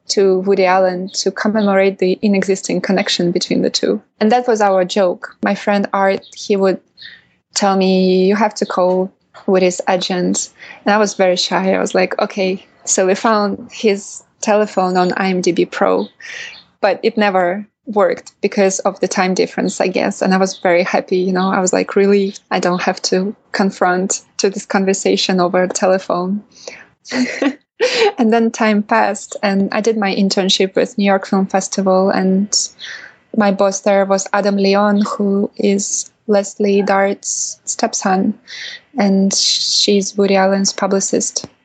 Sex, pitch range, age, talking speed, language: female, 190-215 Hz, 20-39, 155 wpm, English